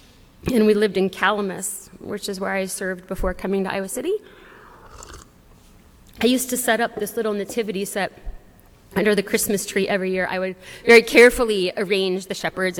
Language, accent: English, American